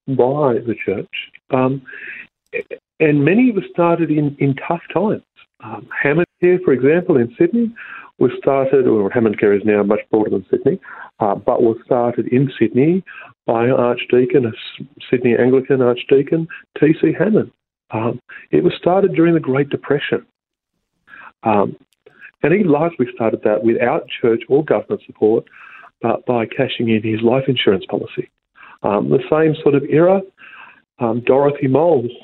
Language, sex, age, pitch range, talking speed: English, male, 50-69, 120-165 Hz, 150 wpm